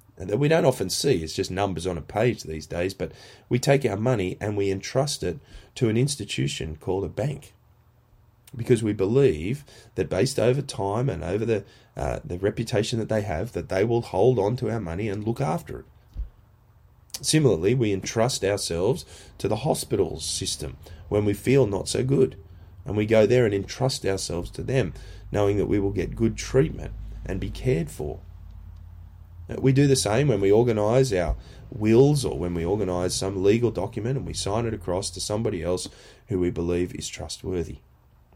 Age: 30-49